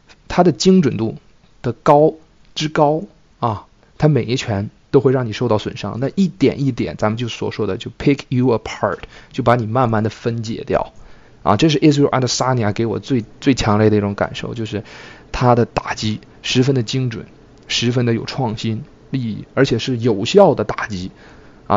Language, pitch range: Chinese, 110-140 Hz